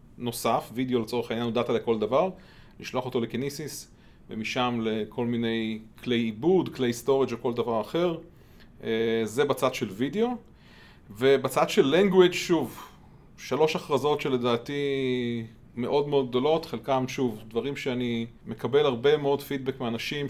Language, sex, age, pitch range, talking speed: Hebrew, male, 30-49, 120-140 Hz, 135 wpm